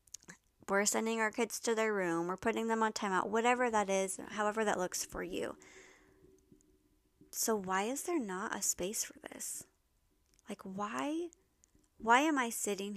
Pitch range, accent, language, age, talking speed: 185-220 Hz, American, English, 20-39, 160 wpm